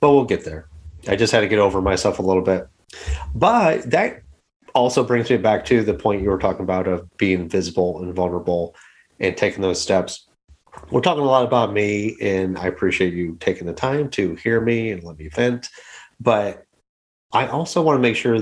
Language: English